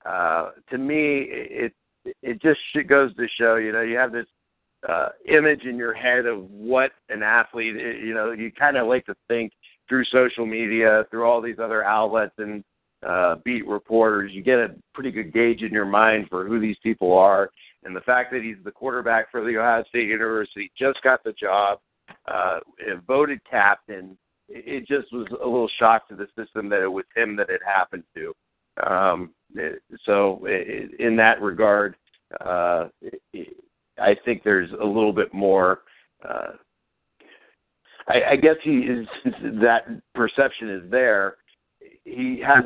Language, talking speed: English, 165 wpm